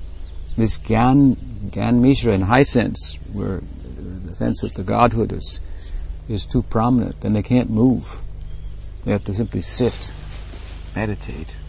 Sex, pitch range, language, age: male, 75-120 Hz, English, 60-79